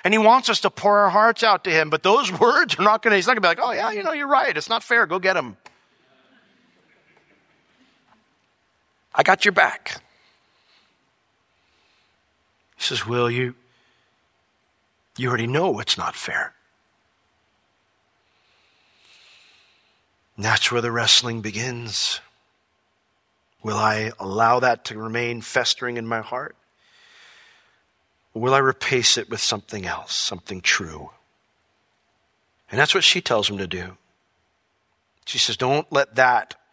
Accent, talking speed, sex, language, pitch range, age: American, 145 wpm, male, English, 110-160 Hz, 50-69